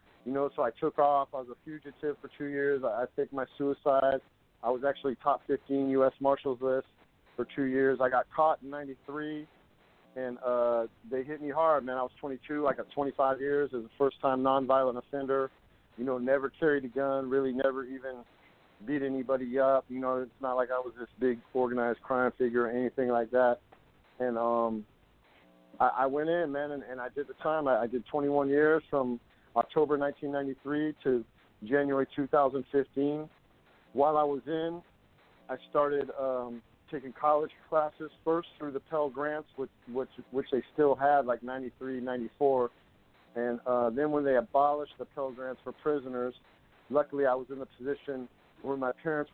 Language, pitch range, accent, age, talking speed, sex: English, 125-140 Hz, American, 40-59, 180 wpm, male